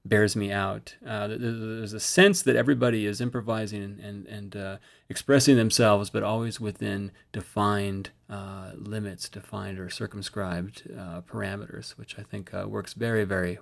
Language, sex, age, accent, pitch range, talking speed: English, male, 30-49, American, 100-125 Hz, 150 wpm